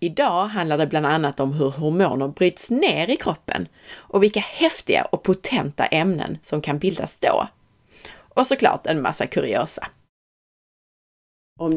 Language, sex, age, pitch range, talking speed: Swedish, female, 30-49, 140-195 Hz, 145 wpm